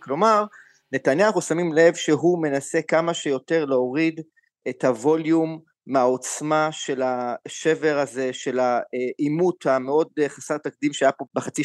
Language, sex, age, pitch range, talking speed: Hebrew, male, 30-49, 135-165 Hz, 125 wpm